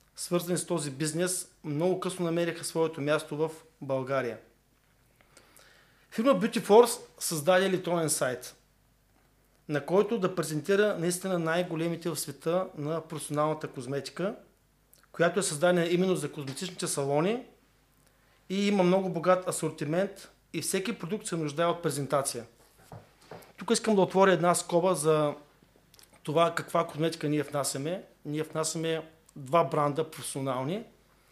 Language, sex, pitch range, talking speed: Bulgarian, male, 145-185 Hz, 125 wpm